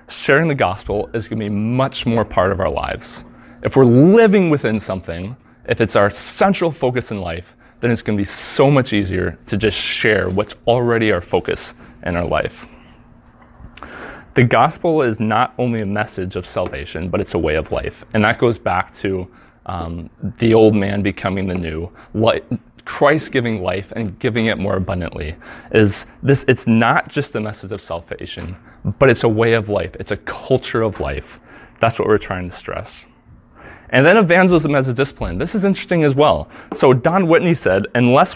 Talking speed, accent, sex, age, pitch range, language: 195 wpm, American, male, 30-49, 100-140 Hz, English